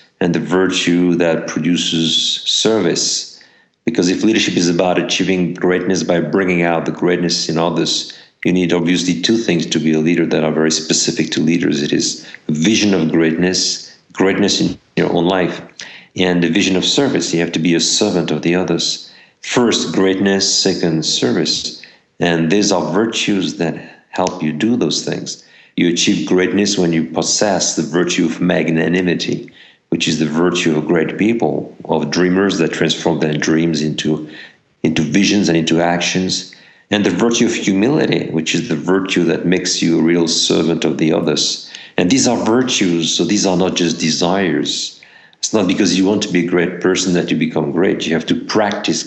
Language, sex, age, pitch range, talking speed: English, male, 50-69, 80-90 Hz, 180 wpm